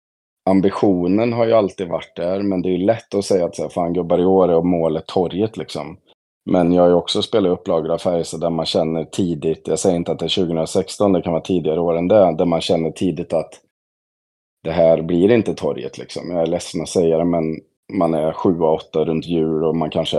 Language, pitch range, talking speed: Swedish, 80-95 Hz, 225 wpm